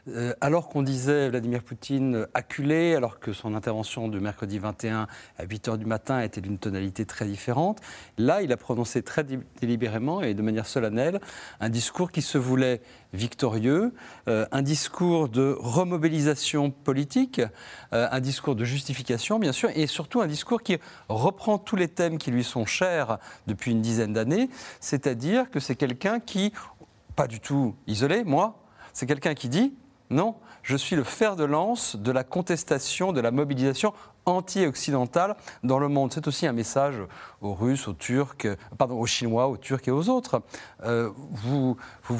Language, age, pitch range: French, 40-59, 120-160 Hz